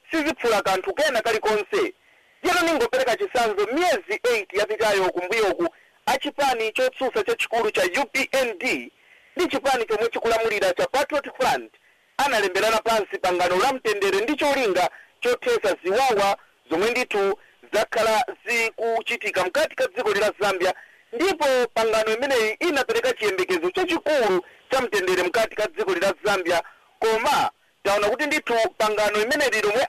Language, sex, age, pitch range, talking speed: English, male, 50-69, 210-350 Hz, 135 wpm